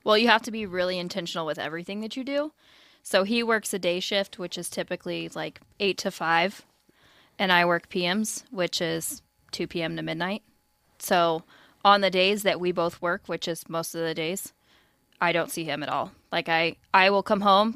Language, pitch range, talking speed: English, 165-205 Hz, 205 wpm